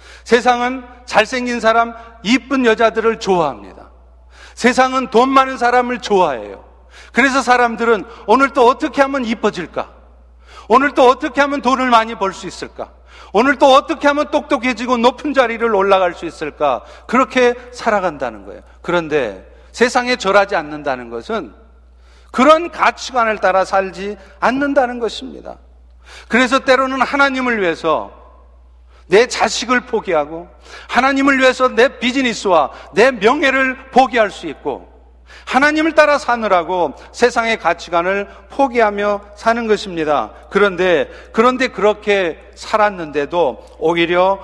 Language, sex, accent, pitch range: Korean, male, native, 170-255 Hz